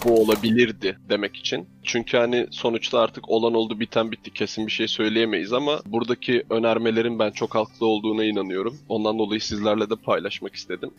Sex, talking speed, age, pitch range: male, 165 wpm, 20-39, 110-120 Hz